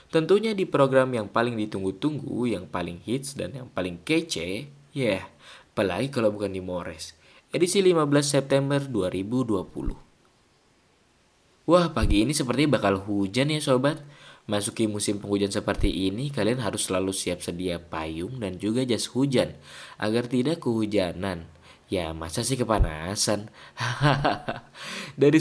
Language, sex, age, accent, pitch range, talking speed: Indonesian, male, 20-39, native, 95-140 Hz, 130 wpm